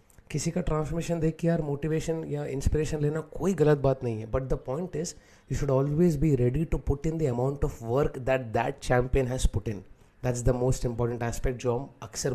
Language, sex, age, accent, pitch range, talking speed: English, male, 30-49, Indian, 125-150 Hz, 195 wpm